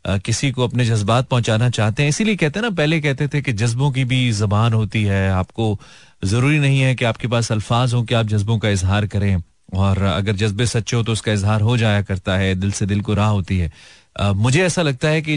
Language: Hindi